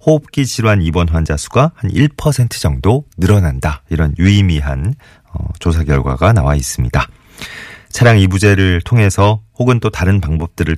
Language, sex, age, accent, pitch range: Korean, male, 40-59, native, 80-120 Hz